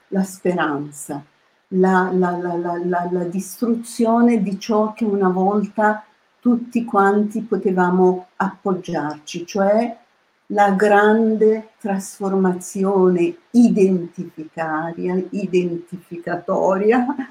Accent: native